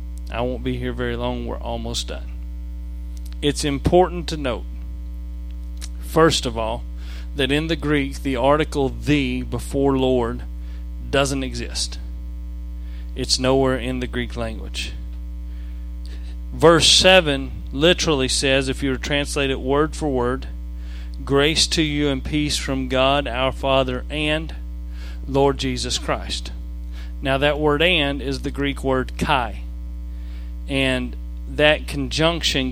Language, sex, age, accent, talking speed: English, male, 40-59, American, 130 wpm